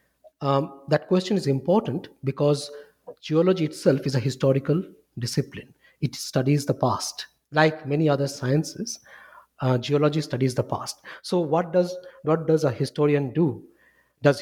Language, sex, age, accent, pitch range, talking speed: English, male, 50-69, Indian, 135-165 Hz, 140 wpm